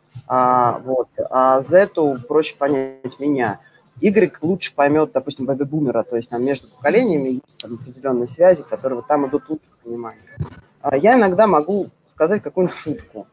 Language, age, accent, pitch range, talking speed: Russian, 20-39, native, 135-185 Hz, 160 wpm